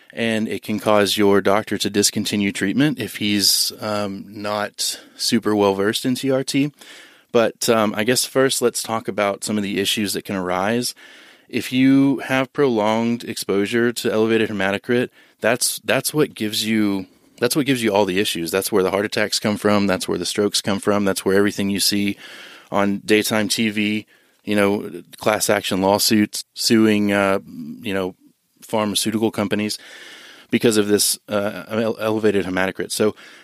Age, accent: 30-49, American